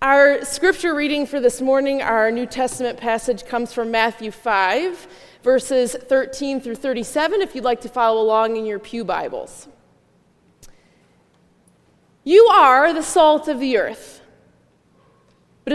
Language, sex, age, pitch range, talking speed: English, female, 20-39, 225-335 Hz, 135 wpm